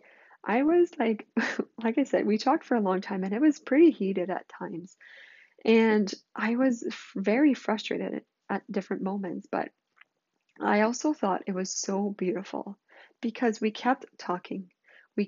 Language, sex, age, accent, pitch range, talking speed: English, female, 20-39, American, 185-225 Hz, 155 wpm